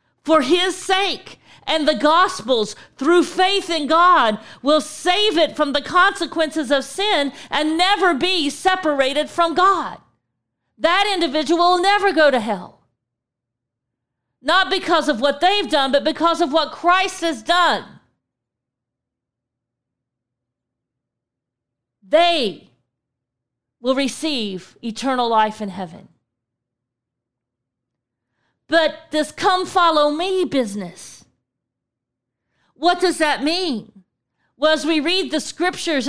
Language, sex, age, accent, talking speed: English, female, 40-59, American, 110 wpm